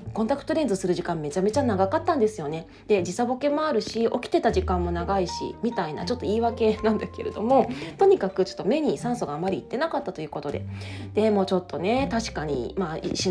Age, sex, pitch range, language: 20-39, female, 195-280 Hz, Japanese